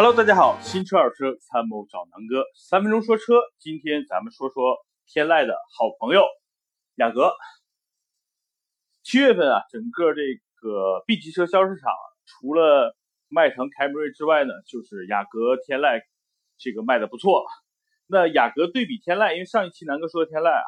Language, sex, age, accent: Chinese, male, 30-49, native